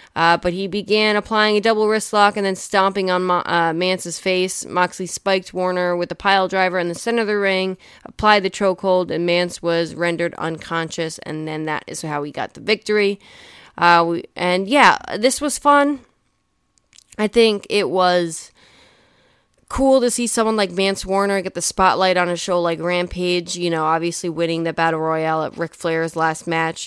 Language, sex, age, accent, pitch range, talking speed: English, female, 20-39, American, 170-200 Hz, 190 wpm